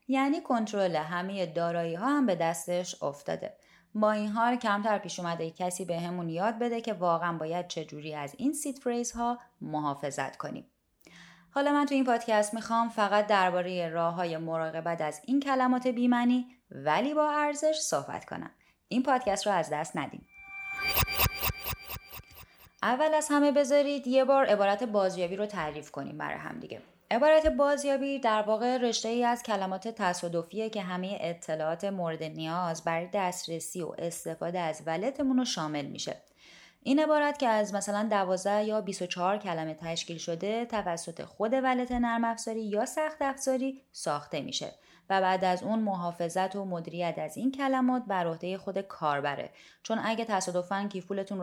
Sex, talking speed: female, 150 wpm